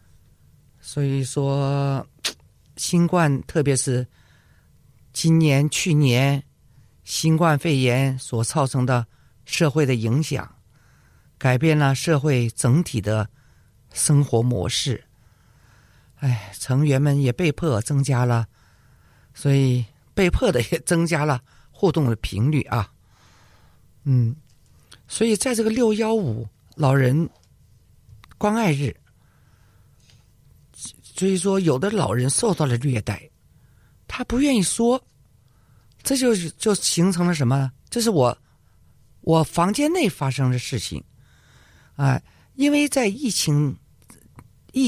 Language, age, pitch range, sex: Chinese, 50-69, 120-160 Hz, male